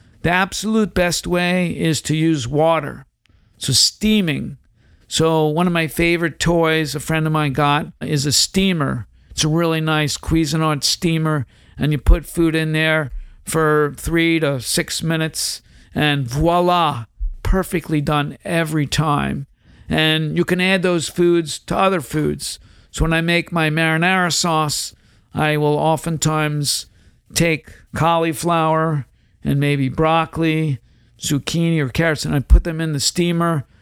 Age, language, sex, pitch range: 50-69, English, male, 145-170 Hz